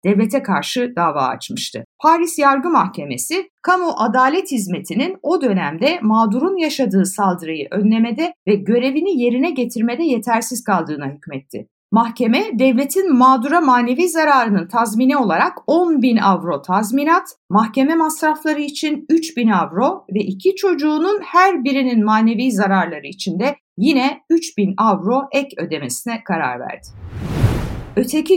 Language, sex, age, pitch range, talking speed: Turkish, female, 60-79, 205-300 Hz, 125 wpm